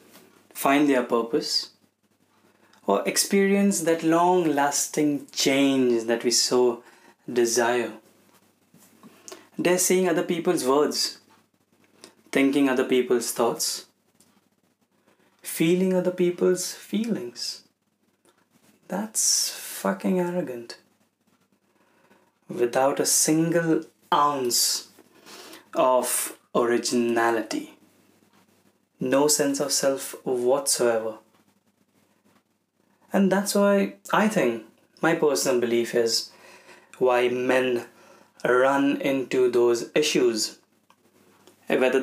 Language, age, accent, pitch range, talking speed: Hindi, 20-39, native, 120-180 Hz, 80 wpm